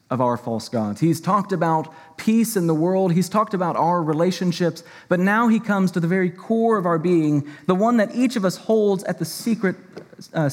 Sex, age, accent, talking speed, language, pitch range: male, 30-49, American, 215 wpm, English, 170-225 Hz